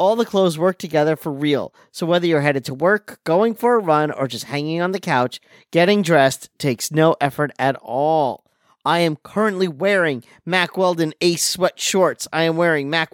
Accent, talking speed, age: American, 195 wpm, 40-59